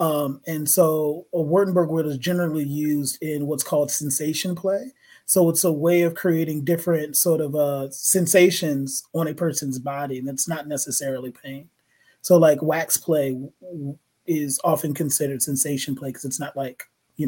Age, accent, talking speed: 30-49, American, 175 wpm